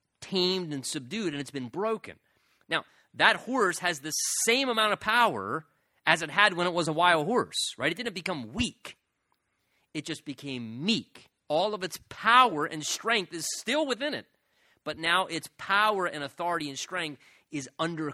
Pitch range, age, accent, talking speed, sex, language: 135-180 Hz, 30-49, American, 180 wpm, male, English